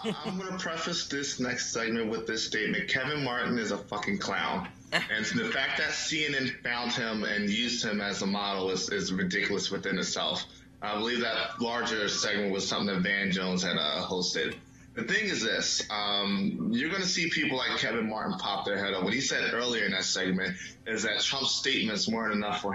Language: English